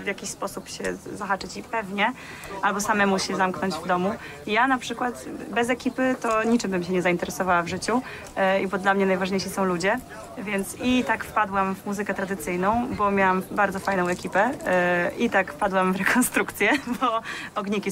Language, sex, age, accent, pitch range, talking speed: Polish, female, 30-49, native, 190-225 Hz, 175 wpm